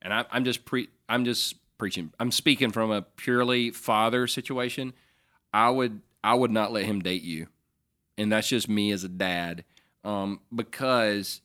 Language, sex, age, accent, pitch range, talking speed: English, male, 40-59, American, 105-125 Hz, 175 wpm